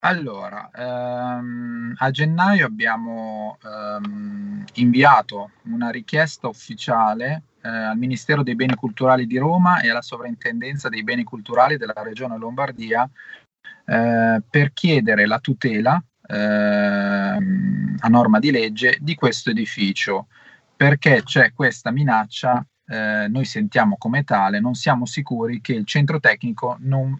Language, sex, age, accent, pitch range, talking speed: Italian, male, 30-49, native, 120-185 Hz, 125 wpm